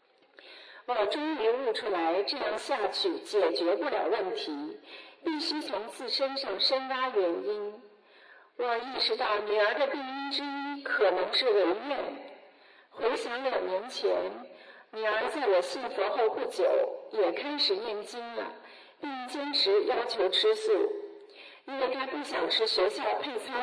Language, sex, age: Chinese, female, 50-69